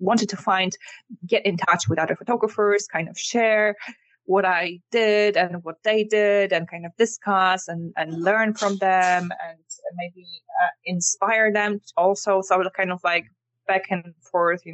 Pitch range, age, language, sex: 175-215 Hz, 20-39, English, female